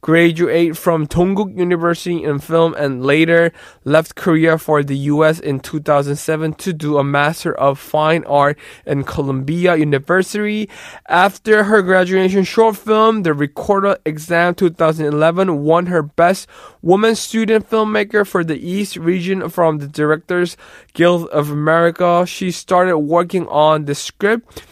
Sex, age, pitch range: male, 20-39, 155-195 Hz